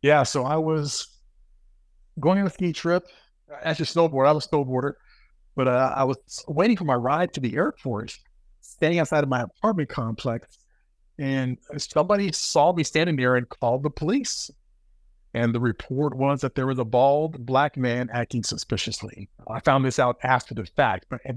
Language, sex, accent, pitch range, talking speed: English, male, American, 110-140 Hz, 185 wpm